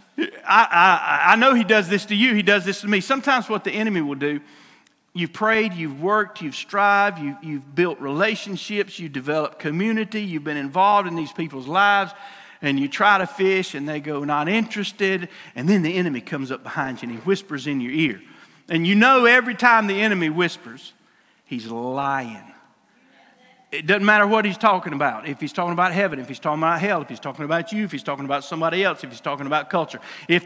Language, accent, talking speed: English, American, 215 wpm